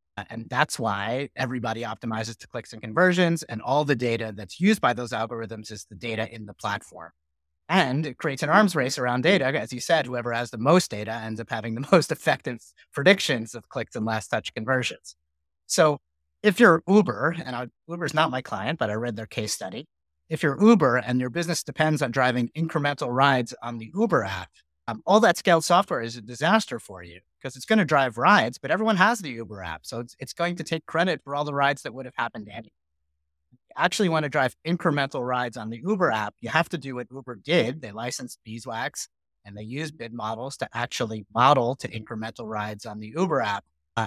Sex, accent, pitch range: male, American, 110-160 Hz